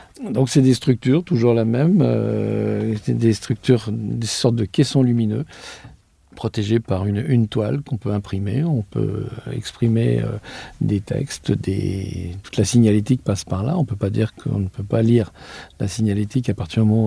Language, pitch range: French, 105-130 Hz